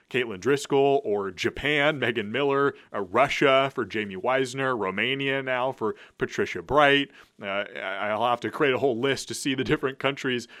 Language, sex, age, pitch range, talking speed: English, male, 30-49, 115-145 Hz, 165 wpm